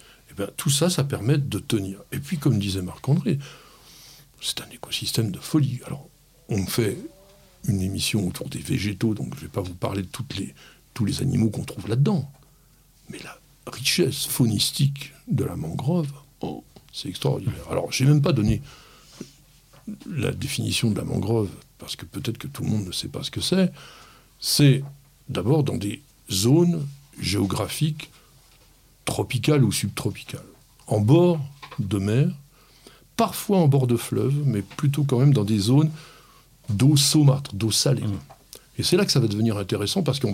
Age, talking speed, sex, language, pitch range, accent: 60-79, 170 wpm, male, French, 115-150 Hz, French